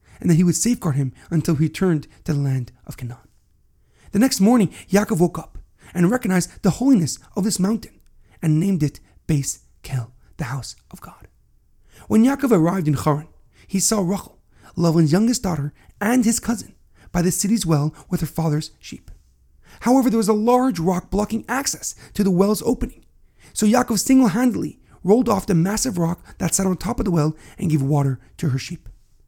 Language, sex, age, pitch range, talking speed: English, male, 40-59, 155-215 Hz, 185 wpm